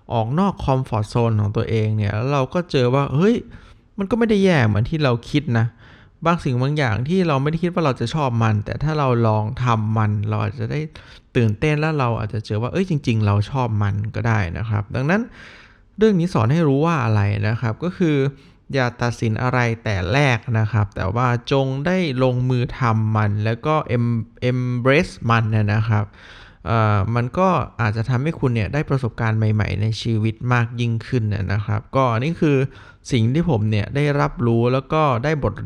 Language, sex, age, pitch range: Thai, male, 20-39, 110-135 Hz